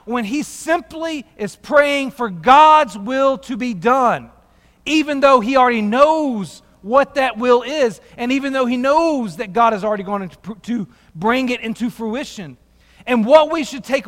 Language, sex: English, male